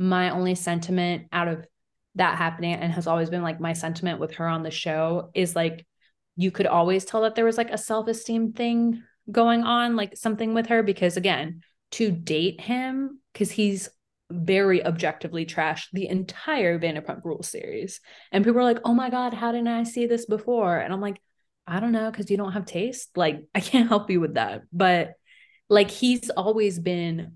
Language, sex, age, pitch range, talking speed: English, female, 20-39, 170-220 Hz, 195 wpm